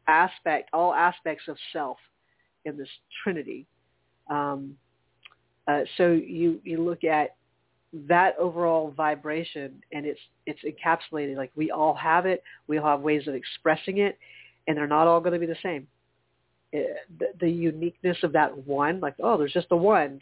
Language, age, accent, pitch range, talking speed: English, 40-59, American, 145-180 Hz, 165 wpm